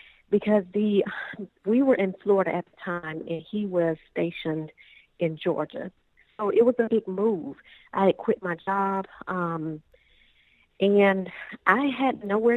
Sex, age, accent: female, 40-59, American